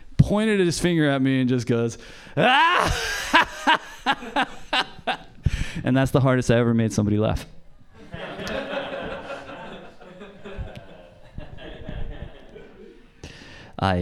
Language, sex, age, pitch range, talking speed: English, male, 20-39, 90-115 Hz, 80 wpm